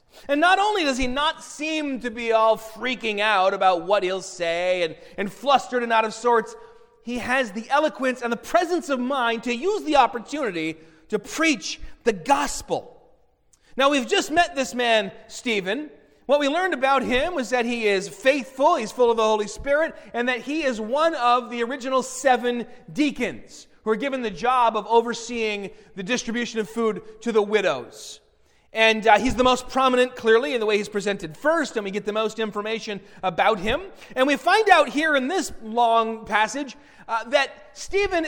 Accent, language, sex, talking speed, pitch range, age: American, English, male, 190 wpm, 210-270 Hz, 30-49